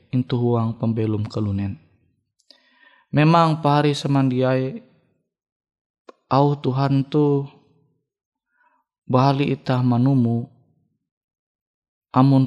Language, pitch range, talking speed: Indonesian, 120-160 Hz, 65 wpm